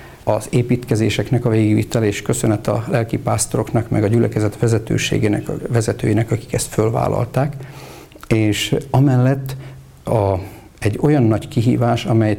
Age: 60-79